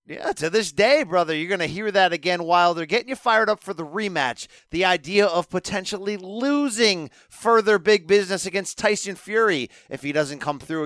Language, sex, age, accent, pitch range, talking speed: English, male, 30-49, American, 165-215 Hz, 195 wpm